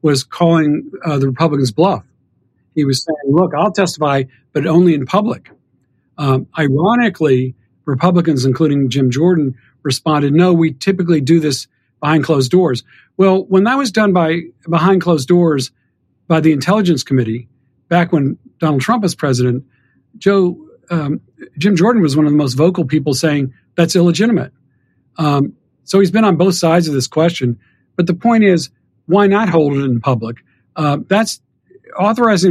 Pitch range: 130-175 Hz